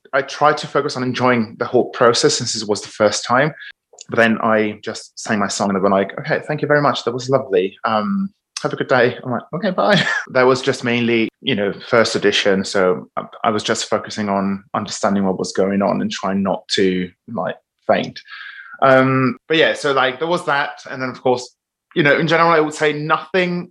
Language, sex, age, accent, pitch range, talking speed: English, male, 20-39, British, 120-155 Hz, 225 wpm